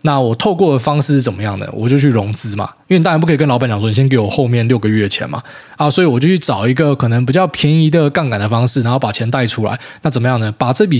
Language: Chinese